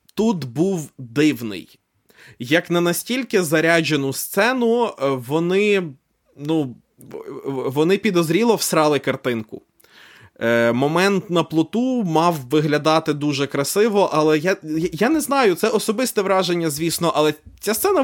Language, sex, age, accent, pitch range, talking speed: Ukrainian, male, 20-39, native, 140-180 Hz, 110 wpm